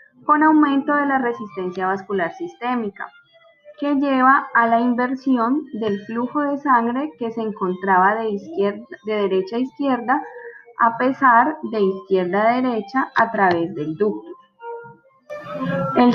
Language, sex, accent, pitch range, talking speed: Spanish, female, Colombian, 200-265 Hz, 135 wpm